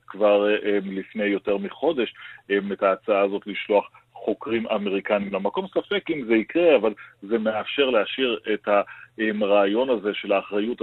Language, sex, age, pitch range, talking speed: Hebrew, male, 40-59, 100-115 Hz, 140 wpm